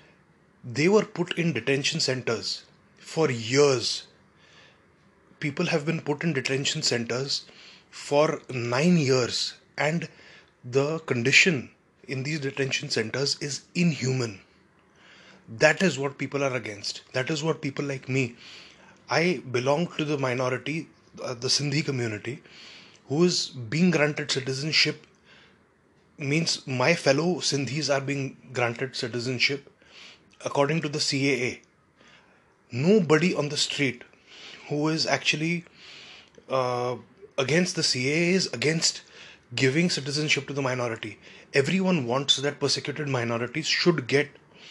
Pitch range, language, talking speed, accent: 130-160 Hz, Hindi, 120 wpm, native